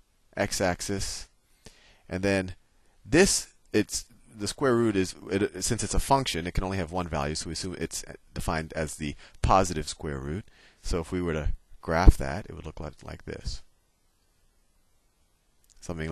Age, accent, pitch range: 30-49, American, 80-100 Hz